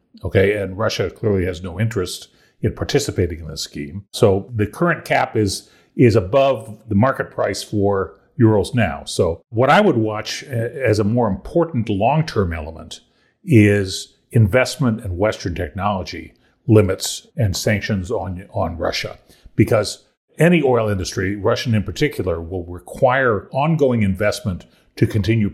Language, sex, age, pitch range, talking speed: English, male, 40-59, 95-120 Hz, 145 wpm